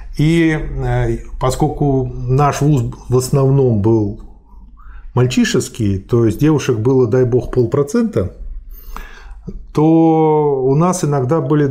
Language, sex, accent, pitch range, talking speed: Russian, male, native, 125-155 Hz, 105 wpm